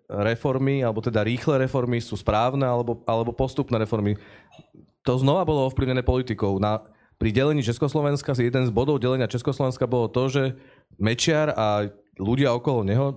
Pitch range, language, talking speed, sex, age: 110-135 Hz, Slovak, 145 wpm, male, 30-49